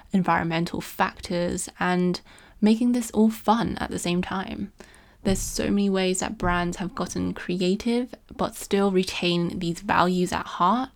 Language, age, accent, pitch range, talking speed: English, 20-39, British, 175-215 Hz, 150 wpm